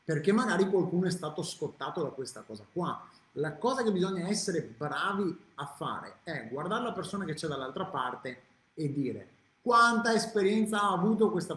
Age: 30-49